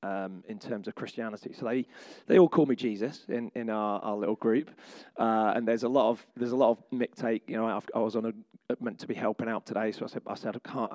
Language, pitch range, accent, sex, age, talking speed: English, 110-130 Hz, British, male, 30-49, 270 wpm